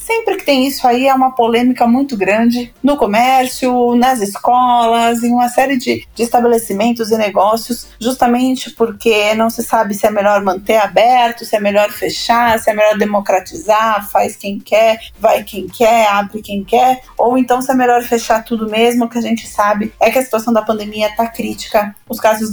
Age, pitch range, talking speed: 20-39, 220-255 Hz, 190 wpm